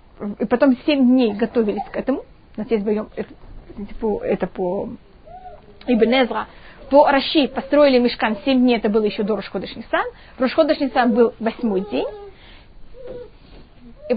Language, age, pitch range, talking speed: Russian, 20-39, 225-300 Hz, 120 wpm